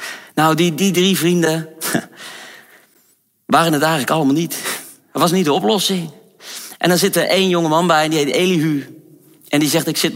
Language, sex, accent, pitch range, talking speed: Dutch, male, Dutch, 165-210 Hz, 190 wpm